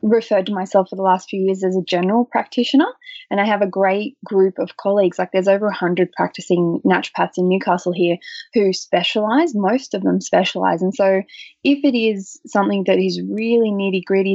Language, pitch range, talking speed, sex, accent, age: English, 185-230 Hz, 190 wpm, female, Australian, 20-39